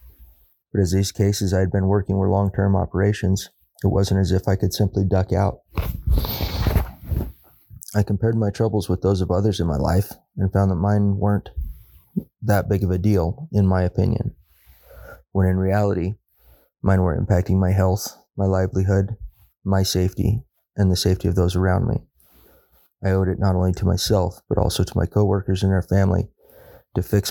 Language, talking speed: English, 175 wpm